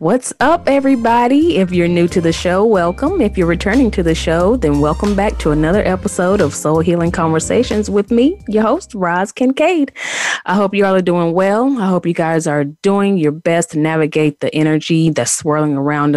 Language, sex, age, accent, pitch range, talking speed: English, female, 30-49, American, 140-185 Hz, 200 wpm